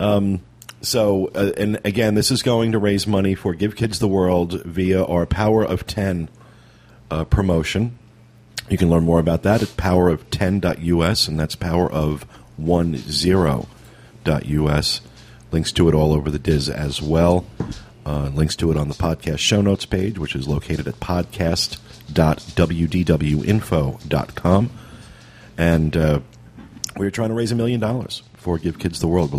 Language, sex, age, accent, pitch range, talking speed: English, male, 40-59, American, 80-110 Hz, 155 wpm